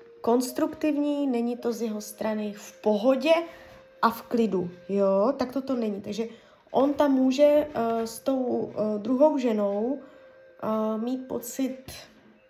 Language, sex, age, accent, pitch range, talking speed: Czech, female, 20-39, native, 205-265 Hz, 140 wpm